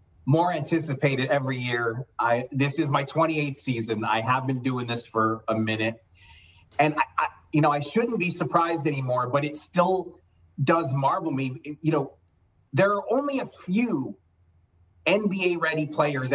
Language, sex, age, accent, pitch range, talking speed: English, male, 30-49, American, 115-160 Hz, 165 wpm